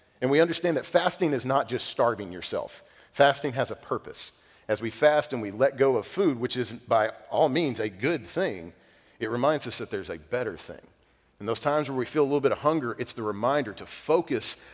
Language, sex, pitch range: English, male, 105-140 Hz